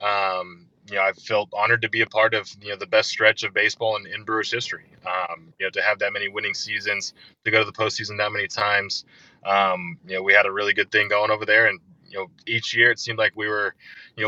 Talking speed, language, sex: 260 wpm, English, male